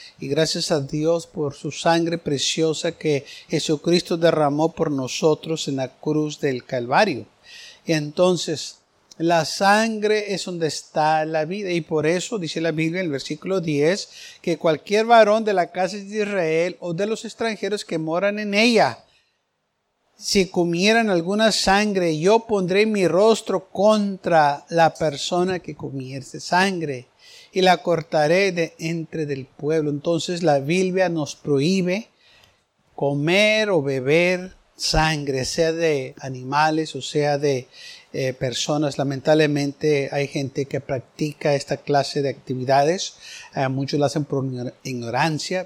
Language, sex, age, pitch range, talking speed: Spanish, male, 60-79, 145-180 Hz, 140 wpm